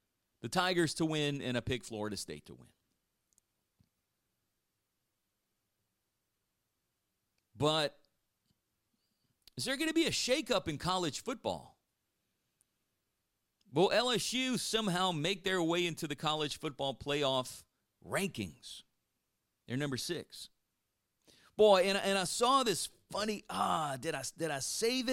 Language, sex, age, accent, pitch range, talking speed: English, male, 40-59, American, 115-165 Hz, 120 wpm